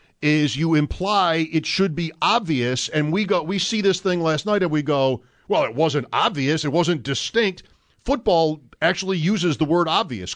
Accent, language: American, English